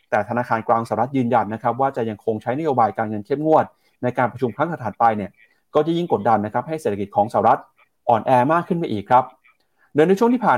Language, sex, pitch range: Thai, male, 120-160 Hz